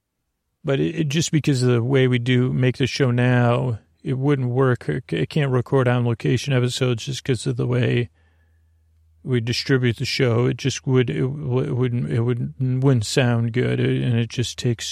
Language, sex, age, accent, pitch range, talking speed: English, male, 40-59, American, 120-135 Hz, 190 wpm